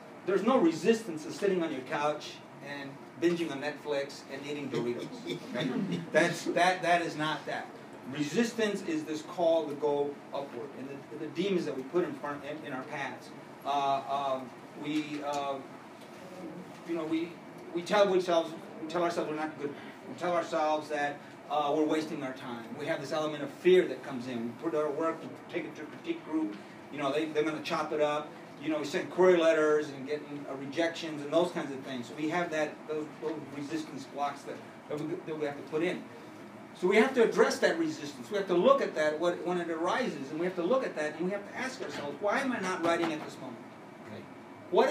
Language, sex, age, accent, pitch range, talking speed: English, male, 40-59, American, 145-180 Hz, 220 wpm